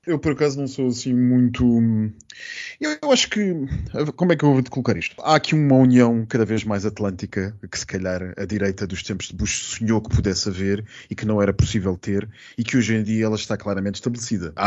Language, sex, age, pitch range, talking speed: Portuguese, male, 20-39, 100-125 Hz, 225 wpm